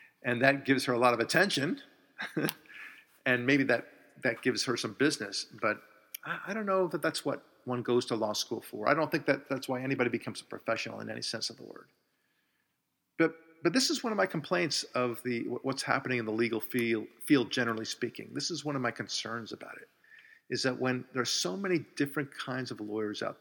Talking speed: 220 wpm